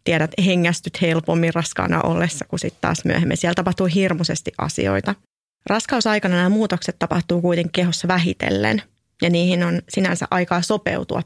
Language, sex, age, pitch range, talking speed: Finnish, female, 30-49, 165-190 Hz, 140 wpm